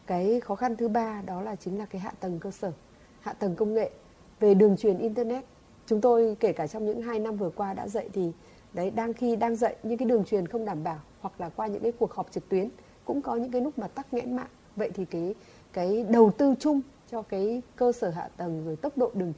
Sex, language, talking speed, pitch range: female, Vietnamese, 255 wpm, 180-235 Hz